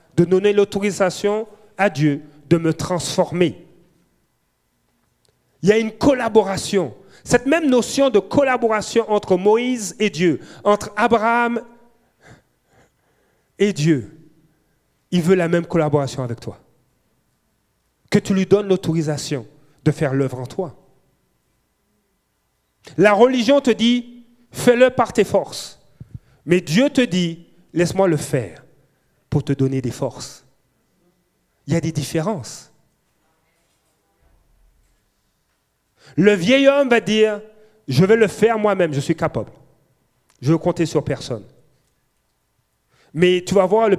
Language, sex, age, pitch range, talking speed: French, male, 40-59, 145-210 Hz, 125 wpm